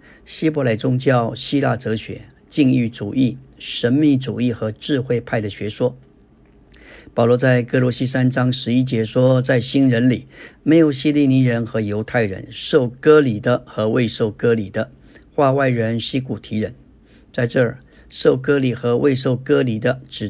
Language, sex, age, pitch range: Chinese, male, 50-69, 115-135 Hz